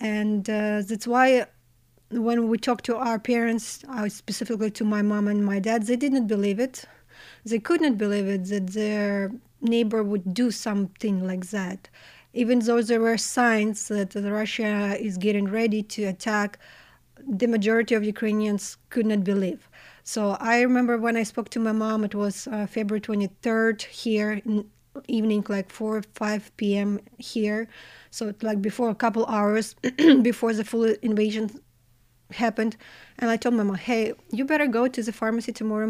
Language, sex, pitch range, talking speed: English, female, 205-235 Hz, 165 wpm